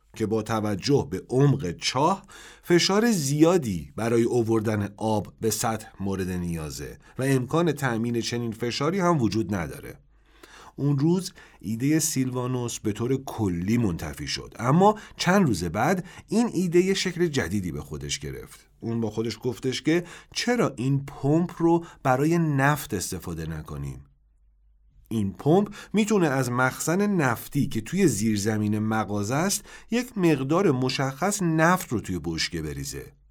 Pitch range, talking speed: 105-160 Hz, 135 wpm